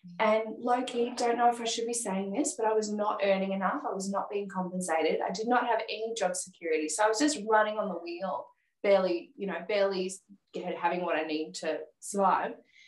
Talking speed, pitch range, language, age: 215 wpm, 185-235 Hz, English, 10-29